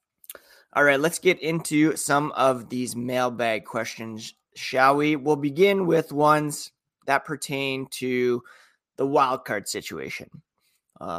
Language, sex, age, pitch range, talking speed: English, male, 30-49, 125-155 Hz, 125 wpm